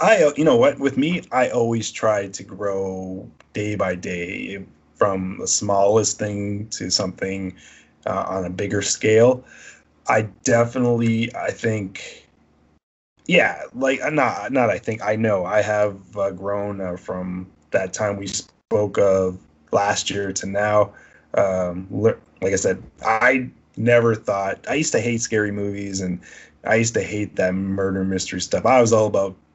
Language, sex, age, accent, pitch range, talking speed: English, male, 20-39, American, 90-110 Hz, 155 wpm